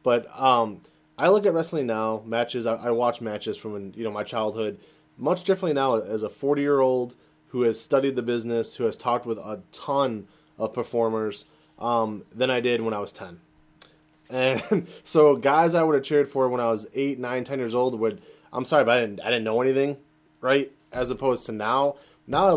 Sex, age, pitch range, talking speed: male, 20-39, 115-150 Hz, 205 wpm